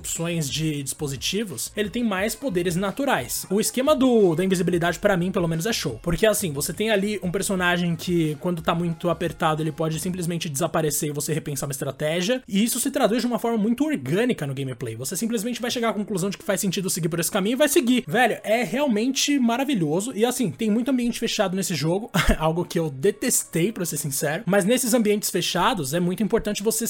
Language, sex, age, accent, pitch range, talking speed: Portuguese, male, 20-39, Brazilian, 170-230 Hz, 210 wpm